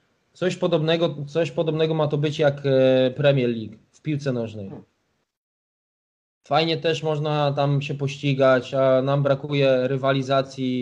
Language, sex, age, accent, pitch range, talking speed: Polish, male, 20-39, native, 135-165 Hz, 130 wpm